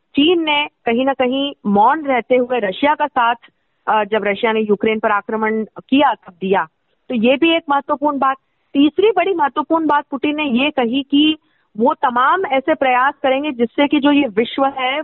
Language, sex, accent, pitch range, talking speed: Hindi, female, native, 230-295 Hz, 185 wpm